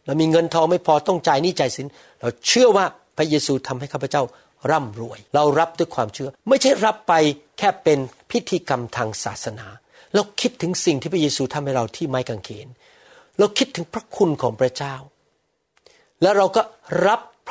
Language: Thai